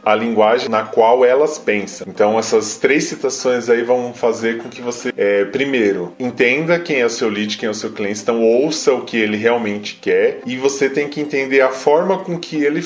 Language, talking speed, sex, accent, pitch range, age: Portuguese, 215 wpm, male, Brazilian, 110-140 Hz, 20-39